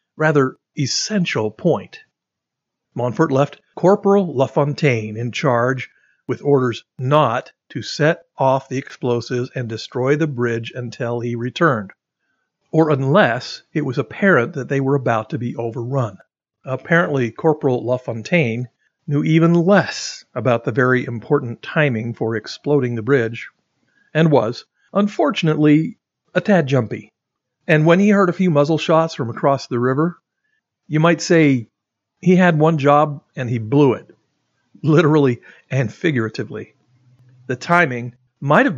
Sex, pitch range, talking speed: male, 120-155 Hz, 135 wpm